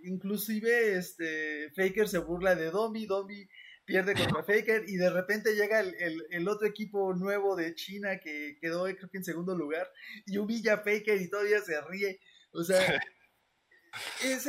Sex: male